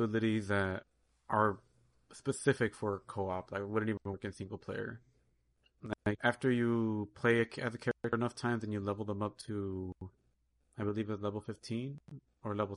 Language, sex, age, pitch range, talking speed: English, male, 30-49, 100-115 Hz, 165 wpm